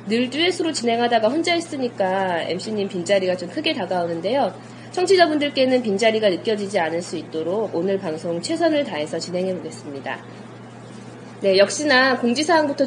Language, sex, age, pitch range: Korean, female, 20-39, 190-295 Hz